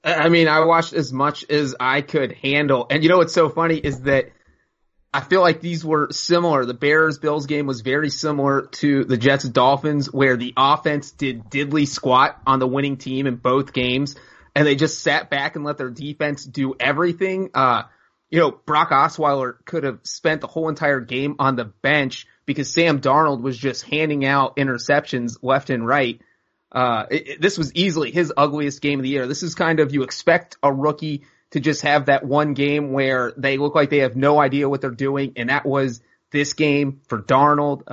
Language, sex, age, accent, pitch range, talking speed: English, male, 30-49, American, 135-155 Hz, 200 wpm